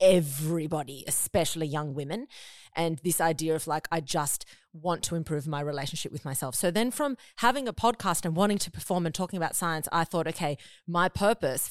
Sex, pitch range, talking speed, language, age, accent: female, 160-200 Hz, 190 wpm, English, 30-49, Australian